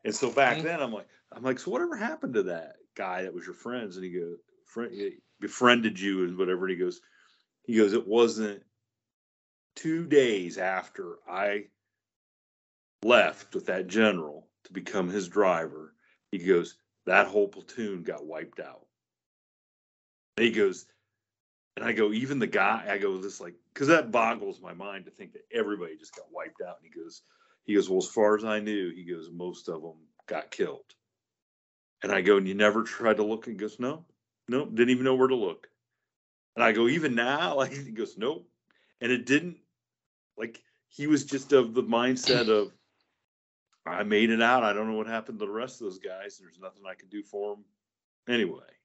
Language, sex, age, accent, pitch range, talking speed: English, male, 40-59, American, 105-160 Hz, 195 wpm